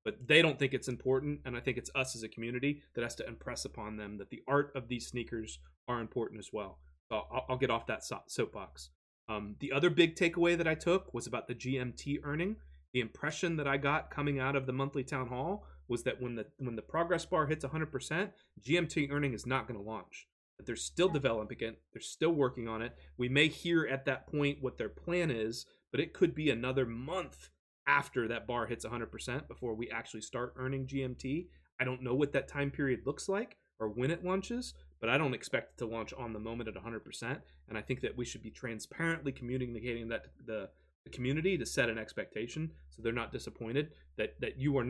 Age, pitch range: 30-49, 115-145 Hz